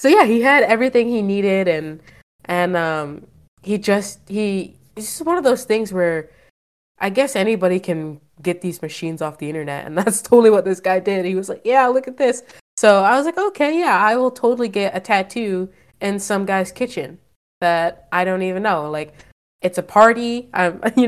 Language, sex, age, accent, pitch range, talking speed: English, female, 20-39, American, 165-220 Hz, 200 wpm